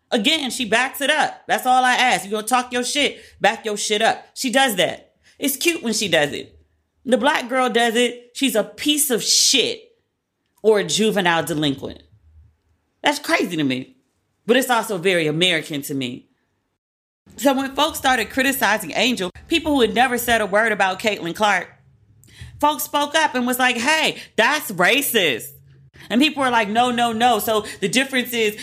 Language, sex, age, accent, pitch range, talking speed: English, female, 30-49, American, 180-250 Hz, 185 wpm